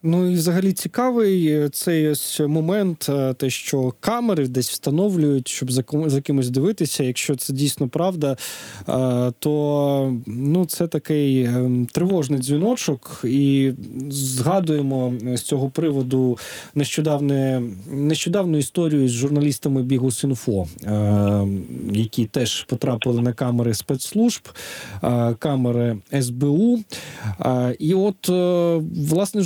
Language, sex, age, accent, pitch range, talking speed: Ukrainian, male, 20-39, native, 125-160 Hz, 95 wpm